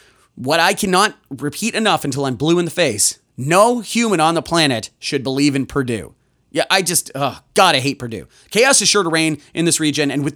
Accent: American